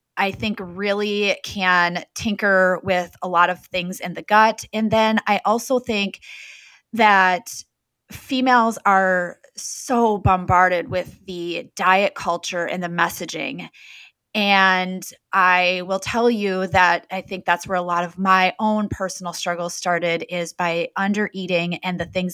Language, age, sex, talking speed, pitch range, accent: English, 20-39, female, 145 wpm, 175-195 Hz, American